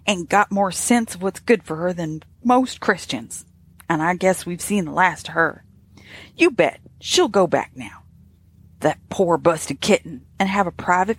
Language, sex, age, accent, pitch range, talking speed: English, female, 40-59, American, 140-205 Hz, 190 wpm